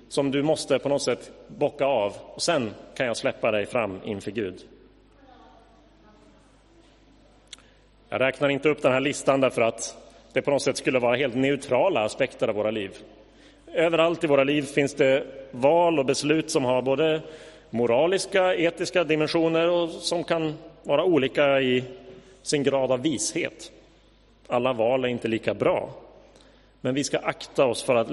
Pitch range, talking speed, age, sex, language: 125-155 Hz, 160 wpm, 30-49, male, Swedish